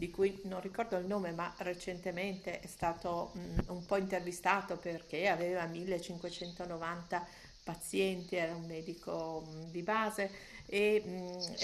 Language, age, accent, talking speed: Italian, 50-69, native, 135 wpm